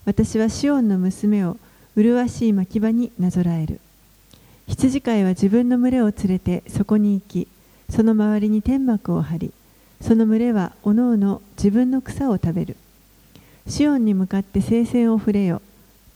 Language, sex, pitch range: Japanese, female, 195-230 Hz